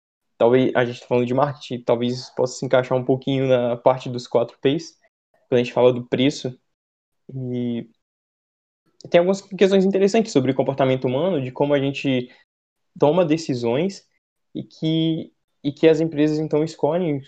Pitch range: 130-160 Hz